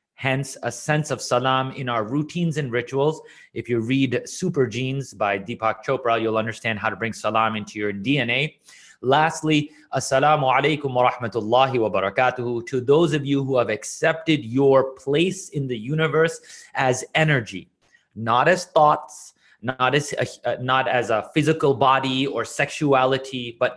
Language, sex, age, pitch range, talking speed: English, male, 30-49, 120-150 Hz, 155 wpm